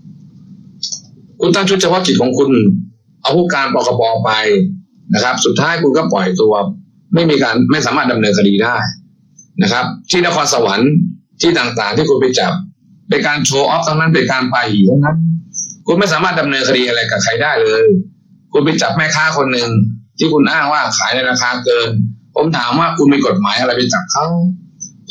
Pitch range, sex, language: 140-190 Hz, male, Thai